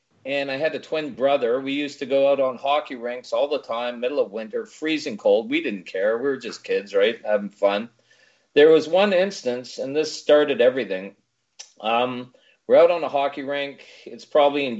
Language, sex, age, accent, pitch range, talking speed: English, male, 40-59, American, 120-155 Hz, 205 wpm